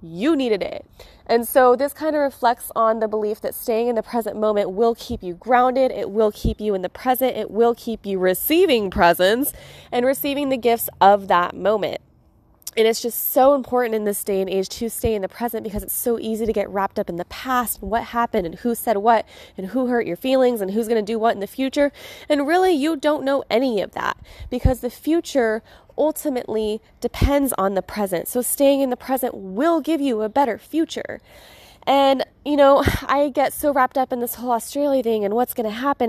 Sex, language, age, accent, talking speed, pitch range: female, English, 20-39, American, 220 wpm, 220-270 Hz